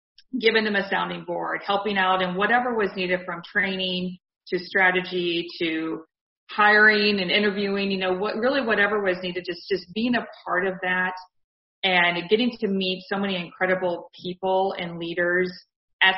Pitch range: 175-200 Hz